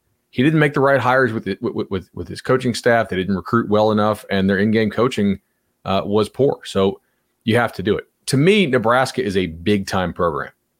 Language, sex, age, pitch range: English, male, 30-49, 100-130 Hz